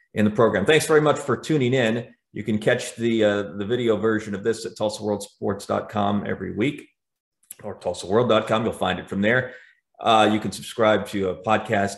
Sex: male